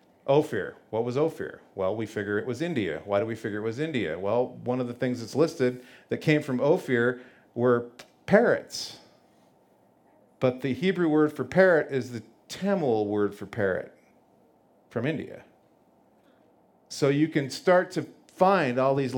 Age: 50-69